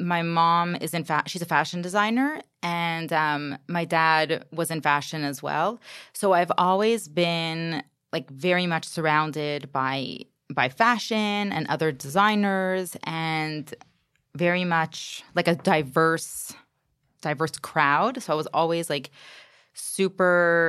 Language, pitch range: English, 150-180 Hz